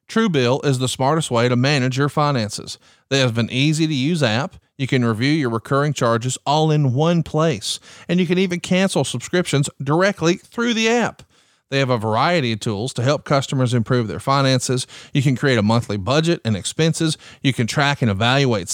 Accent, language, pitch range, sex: American, English, 120-170 Hz, male